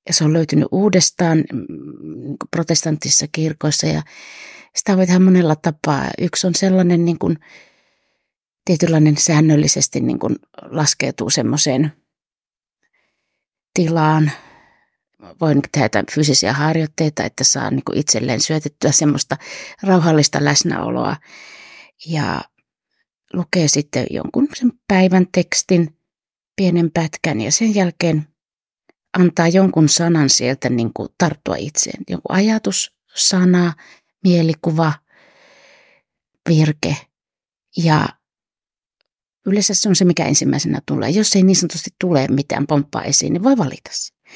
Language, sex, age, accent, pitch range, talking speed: Finnish, female, 30-49, native, 150-190 Hz, 110 wpm